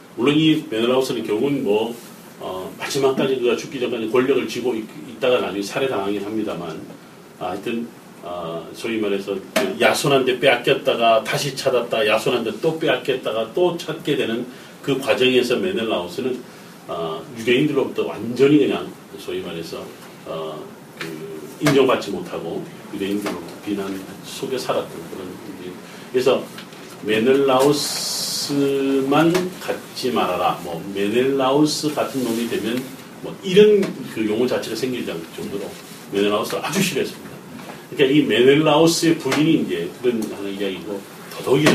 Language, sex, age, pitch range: Korean, male, 40-59, 105-165 Hz